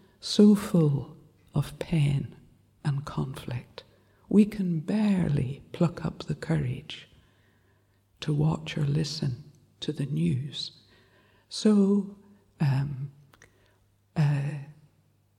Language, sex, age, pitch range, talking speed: English, female, 60-79, 105-170 Hz, 90 wpm